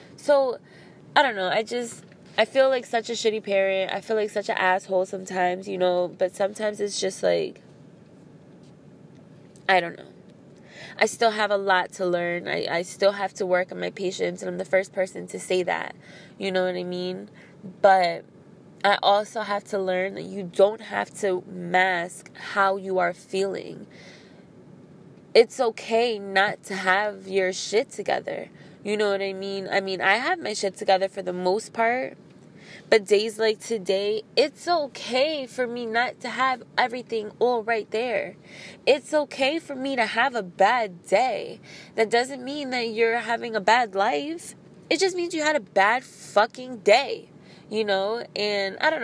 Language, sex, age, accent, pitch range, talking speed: English, female, 20-39, American, 190-230 Hz, 180 wpm